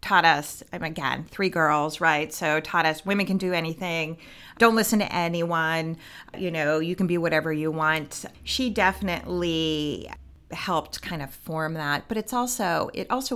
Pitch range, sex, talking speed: 155-200 Hz, female, 170 wpm